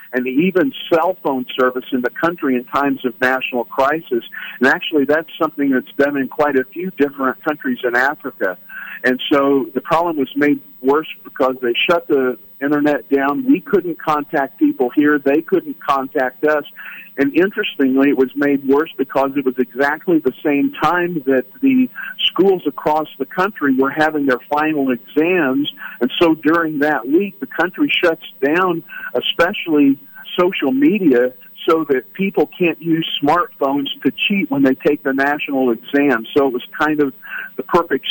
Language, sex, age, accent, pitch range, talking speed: English, male, 50-69, American, 130-160 Hz, 165 wpm